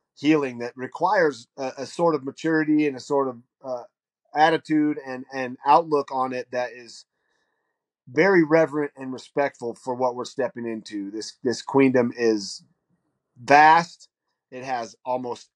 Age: 30-49